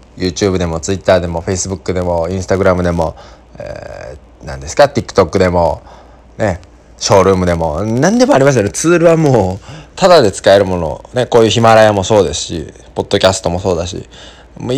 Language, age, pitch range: Japanese, 20-39, 80-125 Hz